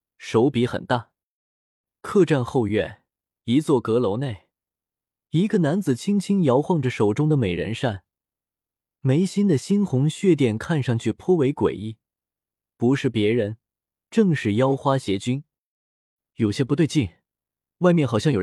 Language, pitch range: Chinese, 110-165 Hz